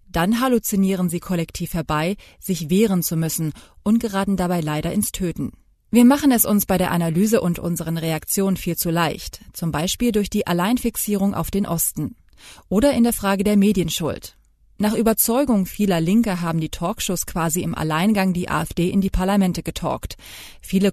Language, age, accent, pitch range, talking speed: German, 30-49, German, 165-210 Hz, 170 wpm